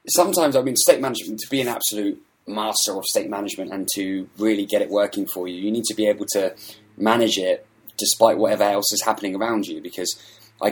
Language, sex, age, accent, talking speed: English, male, 20-39, British, 215 wpm